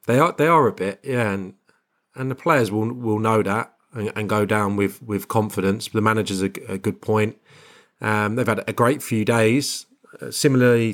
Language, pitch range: English, 95-110 Hz